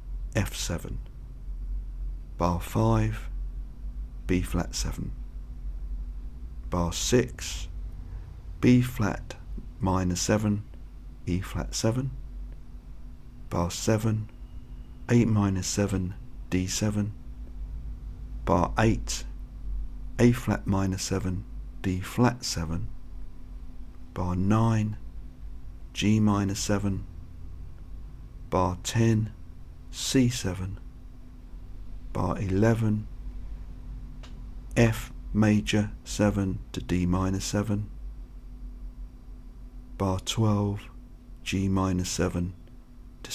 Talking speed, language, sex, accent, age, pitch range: 75 wpm, English, male, British, 50-69, 85-110 Hz